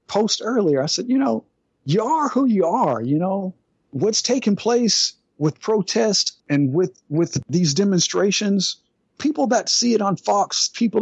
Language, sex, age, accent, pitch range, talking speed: English, male, 50-69, American, 120-195 Hz, 165 wpm